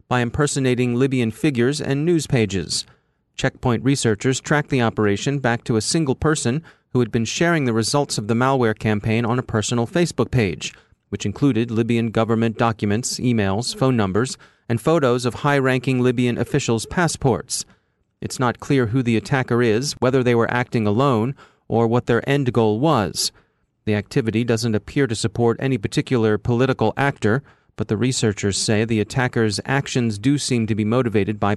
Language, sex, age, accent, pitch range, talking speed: English, male, 30-49, American, 115-140 Hz, 165 wpm